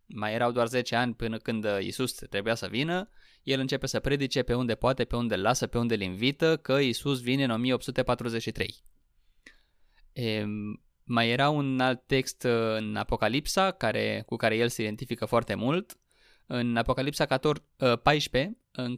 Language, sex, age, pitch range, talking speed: Romanian, male, 20-39, 115-140 Hz, 150 wpm